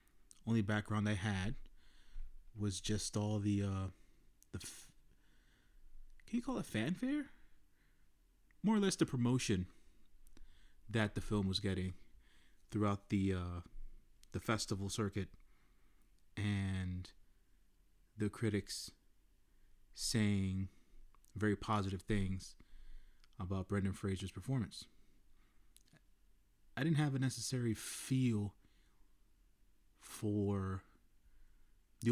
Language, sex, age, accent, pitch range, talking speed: English, male, 30-49, American, 95-115 Hz, 95 wpm